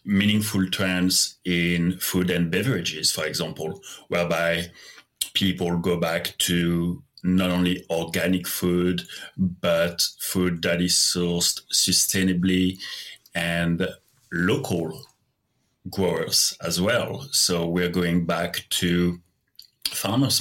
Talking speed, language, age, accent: 100 wpm, English, 30-49, French